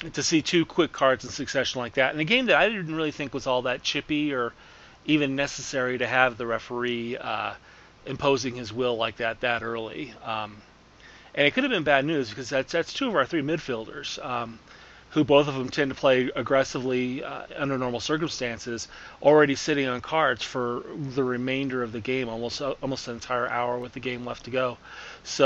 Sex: male